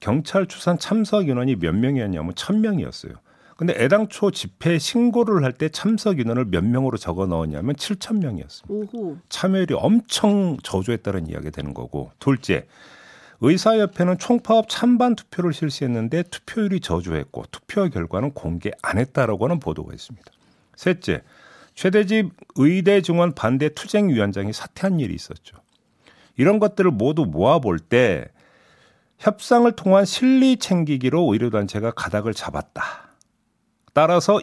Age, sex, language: 50-69, male, Korean